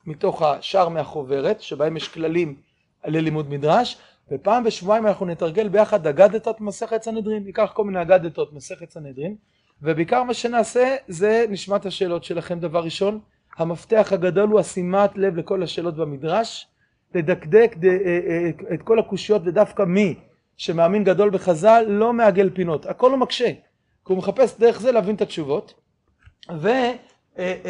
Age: 30-49